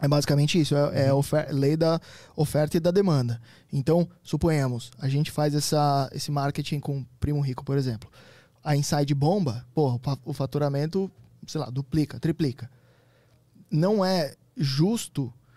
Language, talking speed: Portuguese, 145 wpm